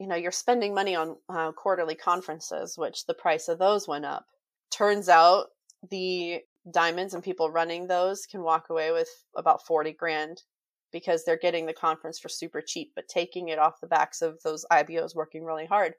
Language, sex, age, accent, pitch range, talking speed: English, female, 30-49, American, 170-215 Hz, 190 wpm